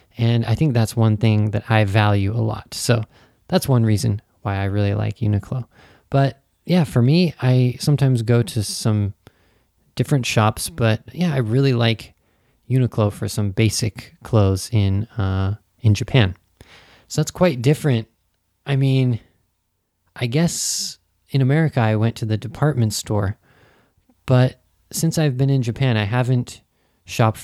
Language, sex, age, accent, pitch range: Japanese, male, 20-39, American, 105-130 Hz